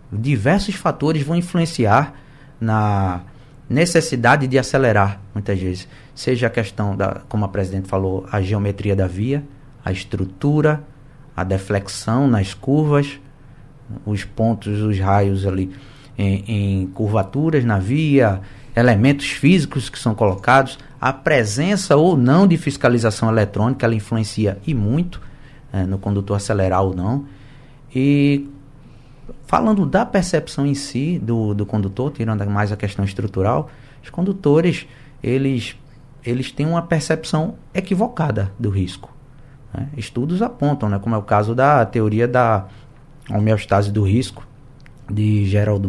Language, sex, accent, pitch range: Portuguese, male, Brazilian, 105-140 Hz